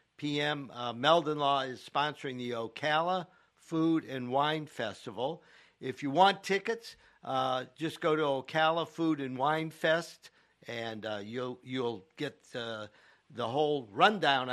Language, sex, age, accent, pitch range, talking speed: English, male, 50-69, American, 125-160 Hz, 135 wpm